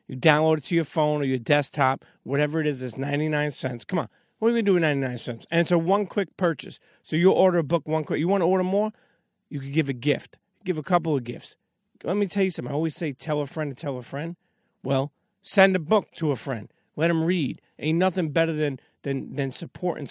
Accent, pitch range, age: American, 135-170 Hz, 40-59